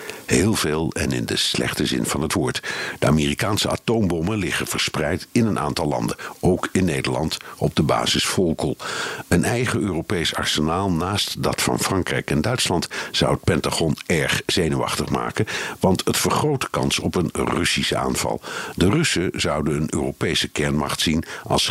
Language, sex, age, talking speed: Dutch, male, 50-69, 160 wpm